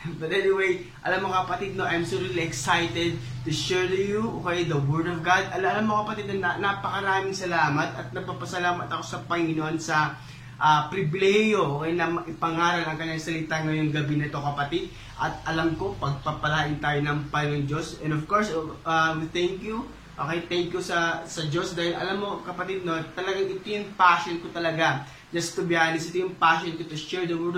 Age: 20-39